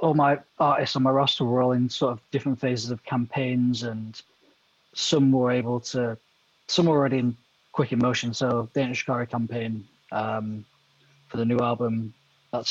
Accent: British